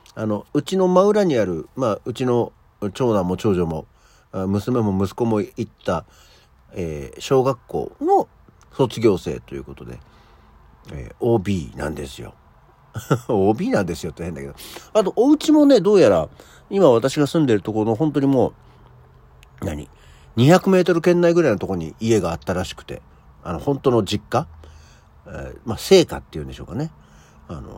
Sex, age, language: male, 50-69, Japanese